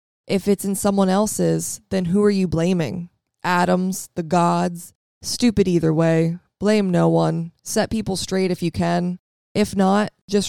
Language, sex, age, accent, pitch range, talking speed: English, female, 20-39, American, 170-205 Hz, 160 wpm